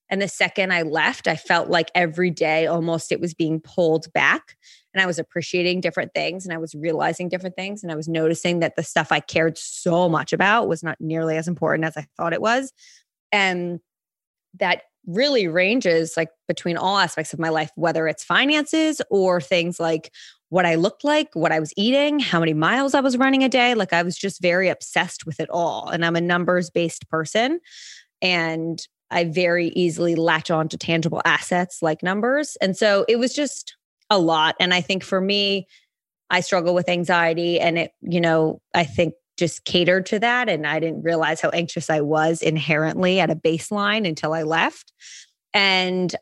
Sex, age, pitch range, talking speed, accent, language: female, 20-39, 165-190 Hz, 195 wpm, American, English